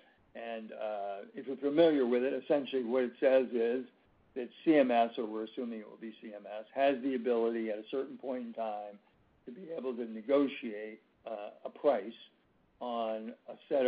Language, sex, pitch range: English, male, 115-140 Hz